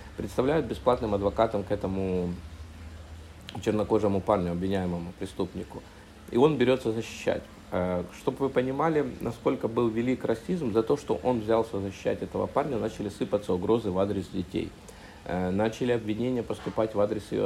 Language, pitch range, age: Russian, 90-110 Hz, 50-69